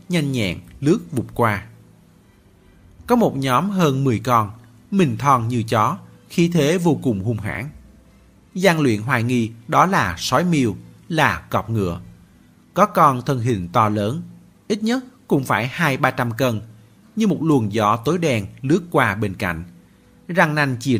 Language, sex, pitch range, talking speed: Vietnamese, male, 105-150 Hz, 165 wpm